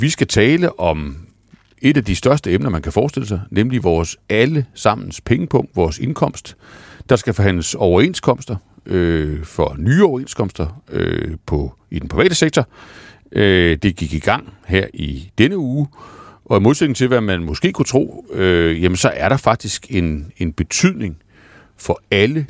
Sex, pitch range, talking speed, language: male, 85-125 Hz, 170 wpm, Danish